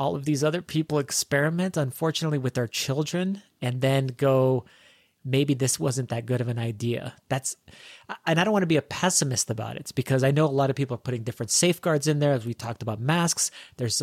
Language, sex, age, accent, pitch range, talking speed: English, male, 30-49, American, 125-150 Hz, 220 wpm